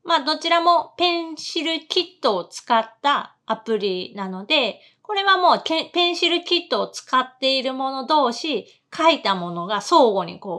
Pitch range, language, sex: 215-325 Hz, Japanese, female